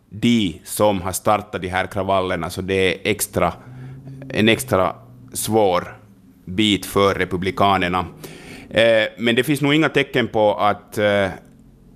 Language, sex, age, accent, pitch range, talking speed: Swedish, male, 30-49, Finnish, 95-110 Hz, 120 wpm